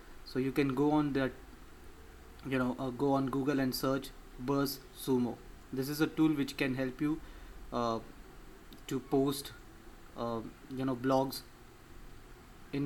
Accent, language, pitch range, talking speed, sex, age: Indian, English, 130-145 Hz, 150 wpm, male, 20-39